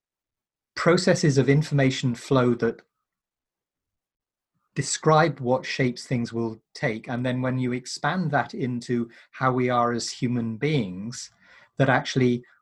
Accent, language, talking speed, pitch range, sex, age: British, English, 125 wpm, 115-140 Hz, male, 30-49